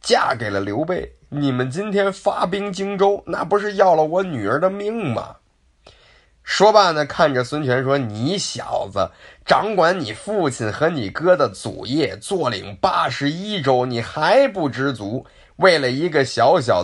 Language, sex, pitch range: Chinese, male, 100-155 Hz